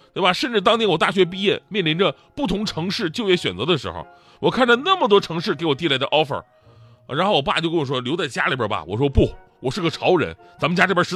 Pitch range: 130-190 Hz